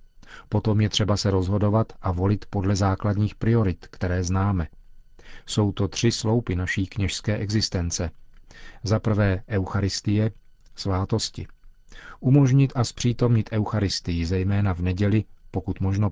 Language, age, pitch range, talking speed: Czech, 40-59, 95-115 Hz, 120 wpm